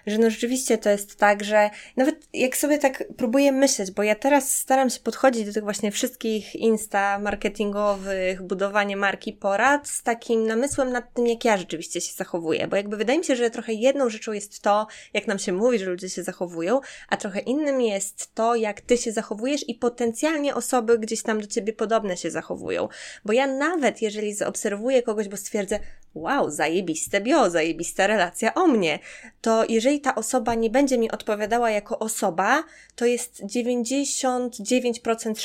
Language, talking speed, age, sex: Polish, 180 wpm, 20-39, female